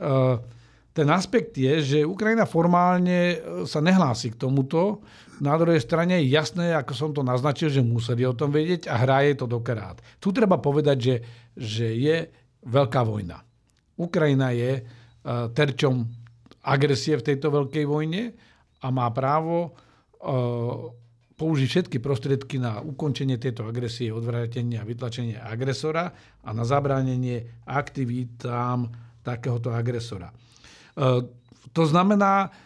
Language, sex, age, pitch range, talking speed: Slovak, male, 50-69, 120-150 Hz, 120 wpm